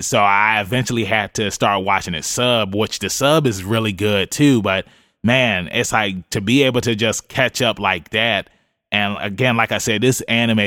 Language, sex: English, male